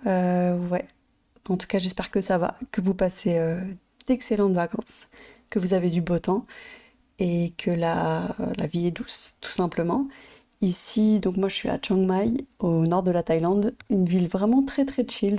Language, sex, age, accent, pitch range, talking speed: French, female, 30-49, French, 180-220 Hz, 190 wpm